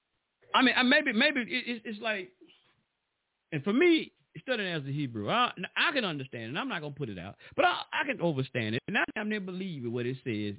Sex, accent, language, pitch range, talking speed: male, American, English, 110-170 Hz, 250 wpm